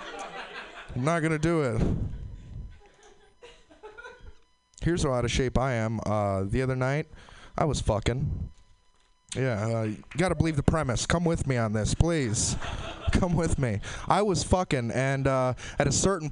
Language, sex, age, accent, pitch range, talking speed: English, male, 20-39, American, 115-180 Hz, 165 wpm